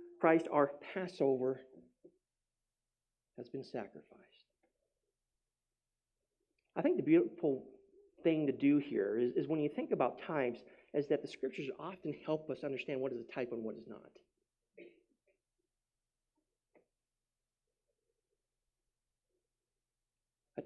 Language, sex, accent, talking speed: English, male, American, 110 wpm